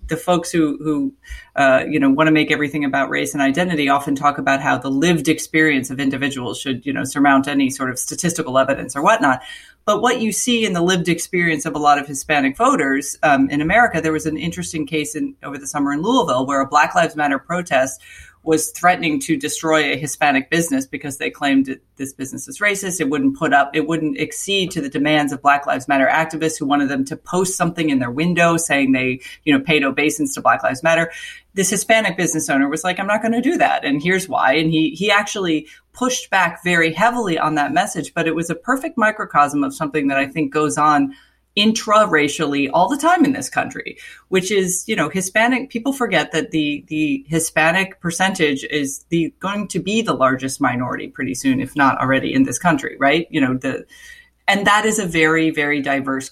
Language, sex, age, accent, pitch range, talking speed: English, female, 30-49, American, 140-190 Hz, 215 wpm